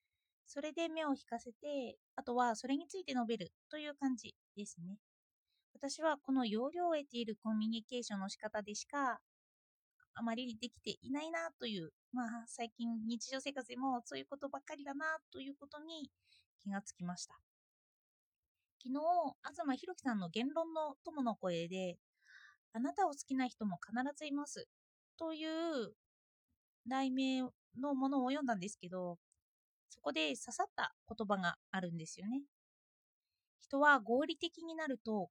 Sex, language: female, Japanese